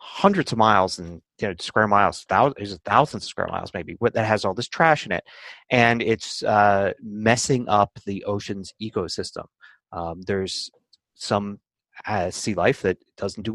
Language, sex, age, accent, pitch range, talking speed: English, male, 30-49, American, 100-125 Hz, 155 wpm